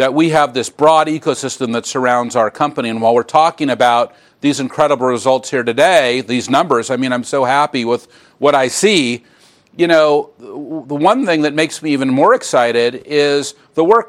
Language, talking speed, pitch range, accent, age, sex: English, 190 wpm, 130-170 Hz, American, 50-69, male